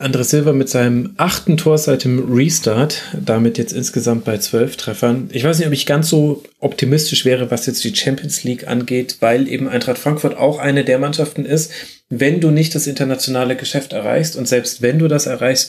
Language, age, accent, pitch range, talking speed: German, 30-49, German, 115-135 Hz, 200 wpm